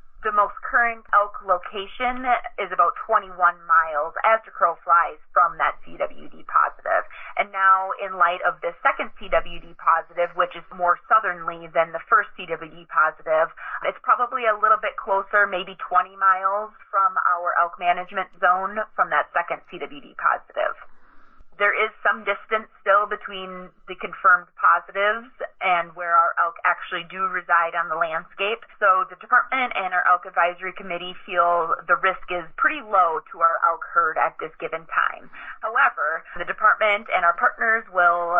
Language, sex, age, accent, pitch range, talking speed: English, female, 30-49, American, 175-215 Hz, 160 wpm